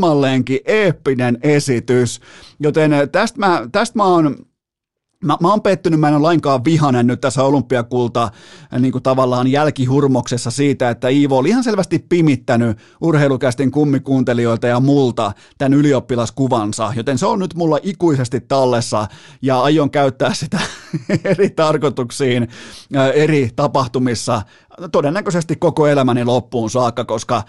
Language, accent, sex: Finnish, native, male